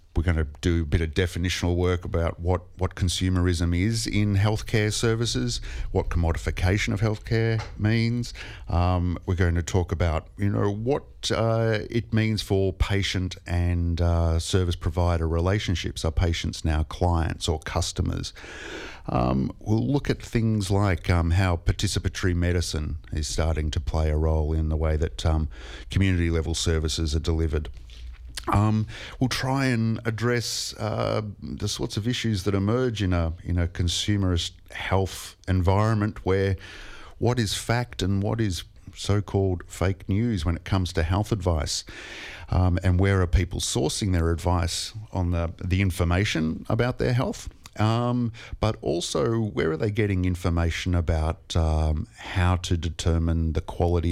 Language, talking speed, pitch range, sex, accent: English, 155 wpm, 85-105 Hz, male, Australian